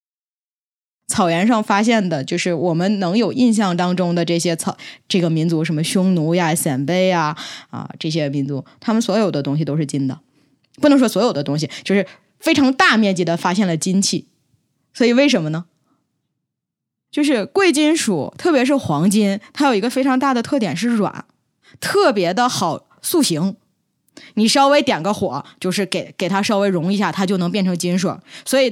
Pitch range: 175-255 Hz